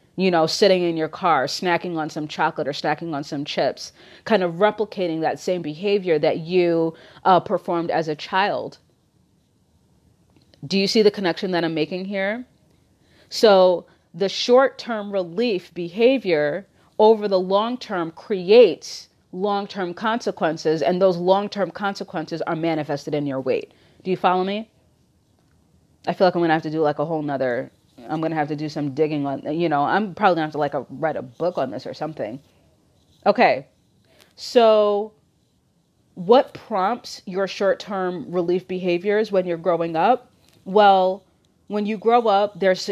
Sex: female